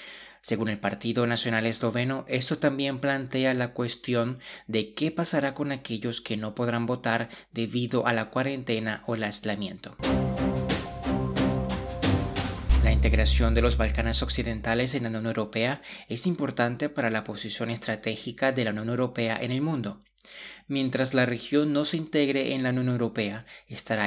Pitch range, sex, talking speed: 110-130 Hz, male, 150 wpm